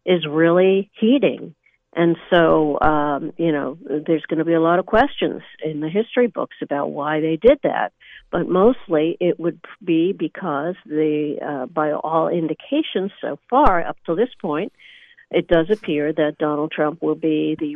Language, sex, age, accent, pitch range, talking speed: English, female, 60-79, American, 155-190 Hz, 170 wpm